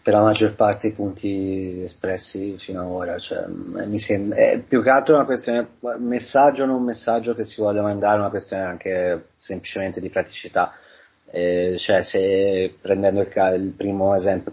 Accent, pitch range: native, 95-115 Hz